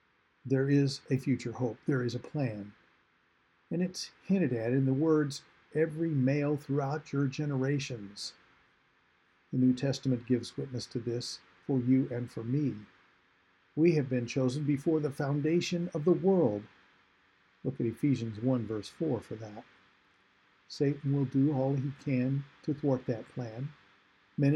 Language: English